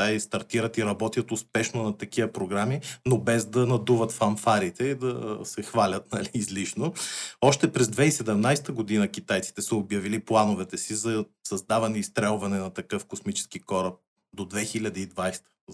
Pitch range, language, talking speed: 105-125 Hz, Bulgarian, 145 wpm